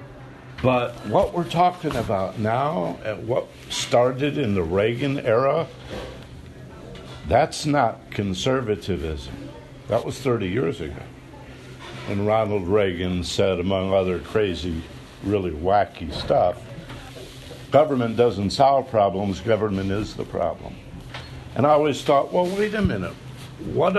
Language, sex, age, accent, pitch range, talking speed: English, male, 60-79, American, 100-130 Hz, 120 wpm